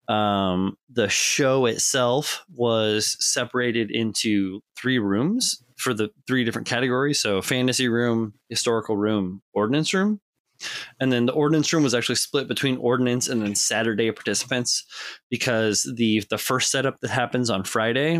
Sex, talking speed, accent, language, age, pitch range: male, 145 wpm, American, English, 20-39, 105-130 Hz